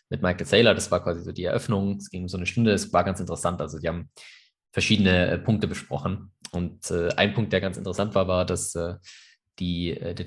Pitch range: 90-100 Hz